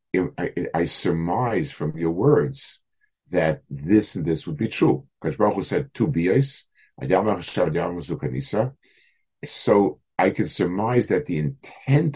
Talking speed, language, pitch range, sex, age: 110 wpm, English, 75-115 Hz, male, 50-69